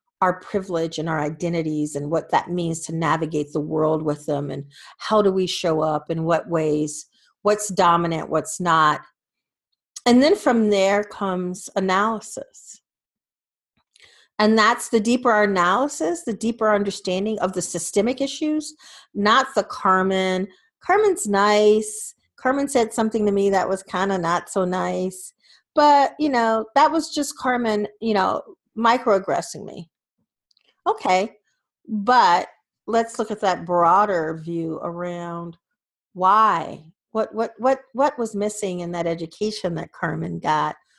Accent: American